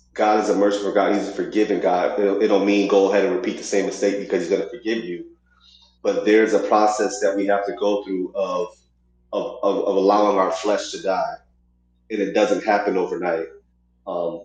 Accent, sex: American, male